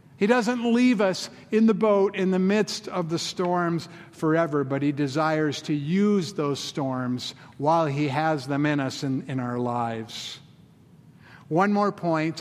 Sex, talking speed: male, 165 wpm